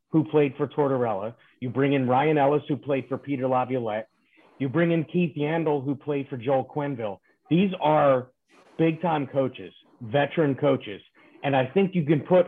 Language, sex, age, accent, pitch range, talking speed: English, male, 30-49, American, 130-165 Hz, 180 wpm